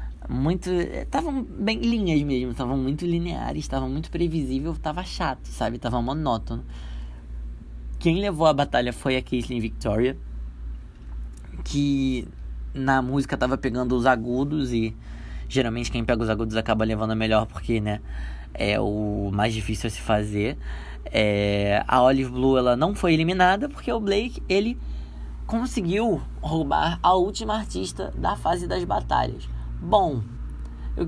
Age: 20-39